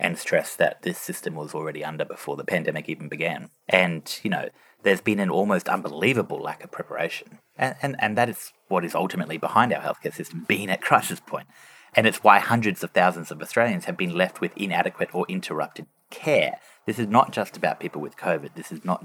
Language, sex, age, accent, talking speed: English, male, 30-49, Australian, 210 wpm